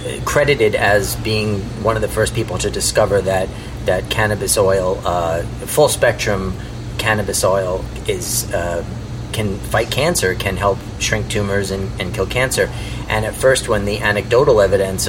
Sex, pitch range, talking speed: male, 100-125 Hz, 155 wpm